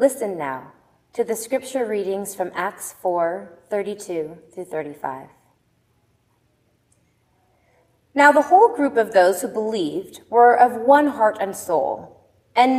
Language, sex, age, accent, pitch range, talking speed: English, female, 20-39, American, 170-225 Hz, 125 wpm